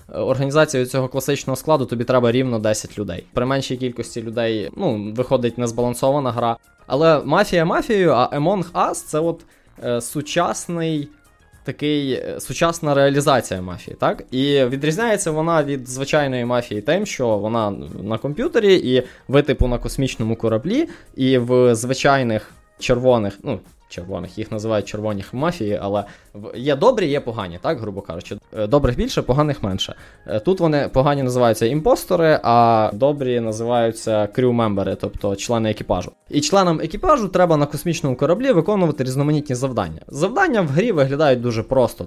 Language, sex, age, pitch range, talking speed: Ukrainian, male, 20-39, 110-145 Hz, 140 wpm